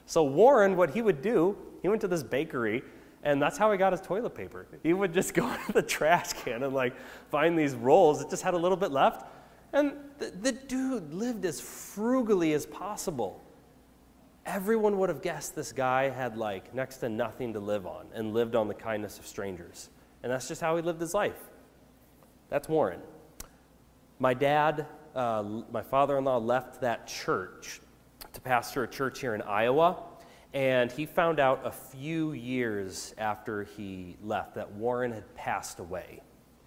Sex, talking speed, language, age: male, 175 wpm, English, 30-49